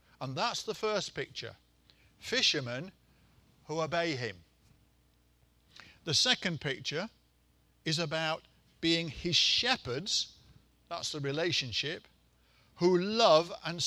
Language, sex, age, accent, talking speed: English, male, 50-69, British, 100 wpm